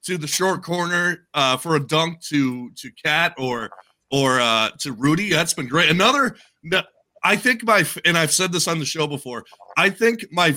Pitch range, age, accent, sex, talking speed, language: 145-195 Hz, 30-49, American, male, 205 wpm, English